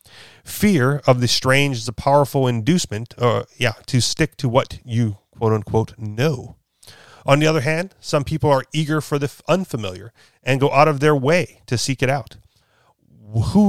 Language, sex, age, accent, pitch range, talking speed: English, male, 40-59, American, 115-145 Hz, 170 wpm